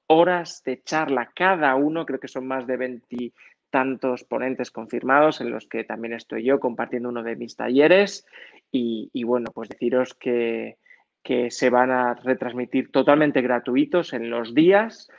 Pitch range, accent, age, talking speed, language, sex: 125-170 Hz, Spanish, 20-39, 160 wpm, Spanish, male